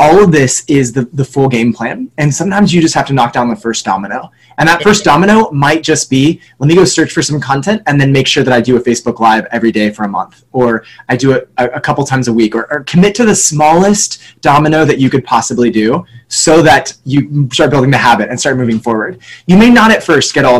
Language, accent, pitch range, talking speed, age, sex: English, American, 120-160 Hz, 260 wpm, 20-39, male